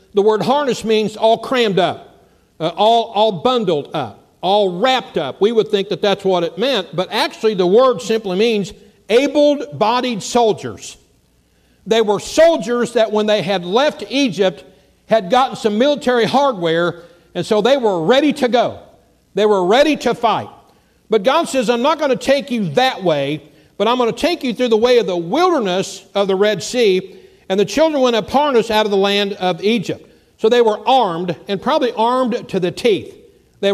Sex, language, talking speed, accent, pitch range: male, English, 190 wpm, American, 195-250 Hz